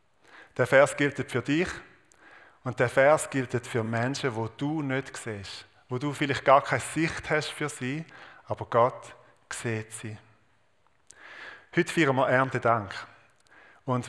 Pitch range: 120-145 Hz